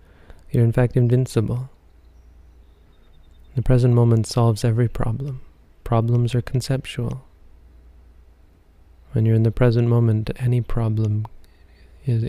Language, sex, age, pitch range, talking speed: English, male, 20-39, 80-115 Hz, 105 wpm